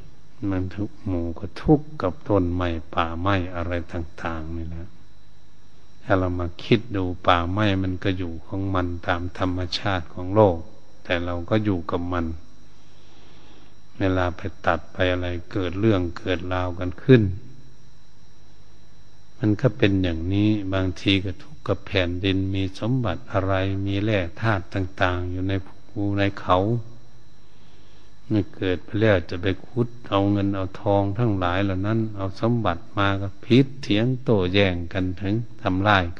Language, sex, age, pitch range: Thai, male, 70-89, 90-110 Hz